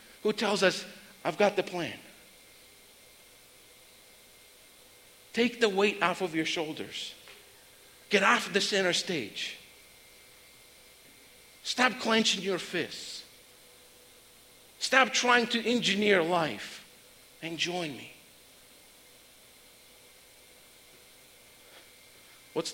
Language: English